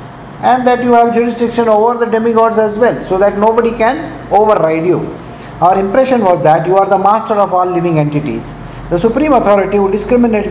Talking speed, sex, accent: 190 wpm, male, Indian